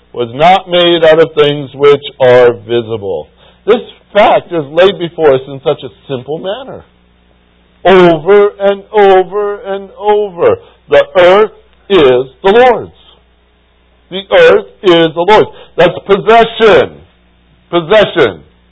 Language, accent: English, American